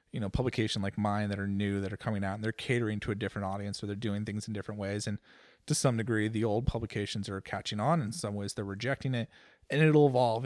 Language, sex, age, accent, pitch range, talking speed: English, male, 30-49, American, 105-140 Hz, 260 wpm